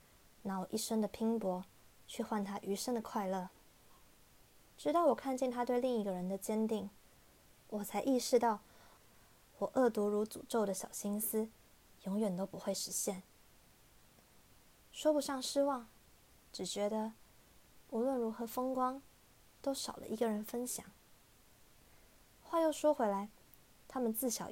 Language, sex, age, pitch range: Chinese, female, 20-39, 200-255 Hz